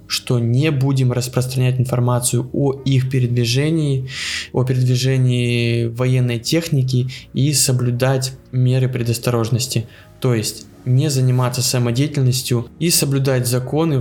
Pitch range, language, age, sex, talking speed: 125-140 Hz, Ukrainian, 20-39, male, 105 wpm